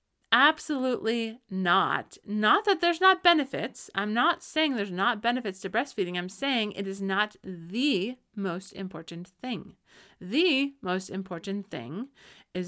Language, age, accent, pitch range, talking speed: English, 30-49, American, 185-265 Hz, 135 wpm